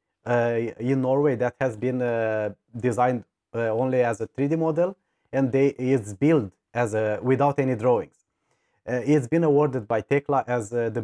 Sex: male